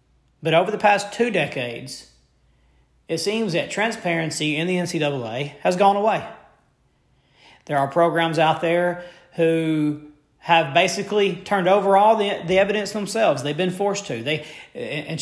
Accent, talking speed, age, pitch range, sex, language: American, 145 wpm, 40-59, 155-205 Hz, male, English